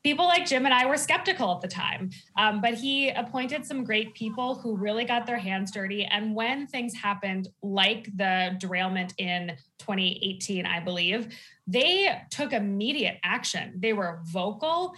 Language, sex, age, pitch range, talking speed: English, female, 20-39, 190-250 Hz, 165 wpm